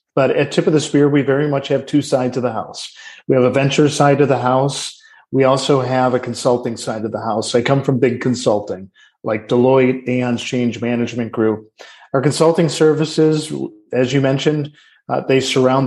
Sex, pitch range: male, 125-140 Hz